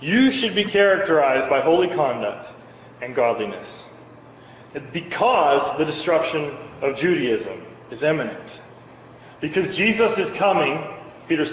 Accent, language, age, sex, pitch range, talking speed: American, English, 30-49, male, 155-205 Hz, 110 wpm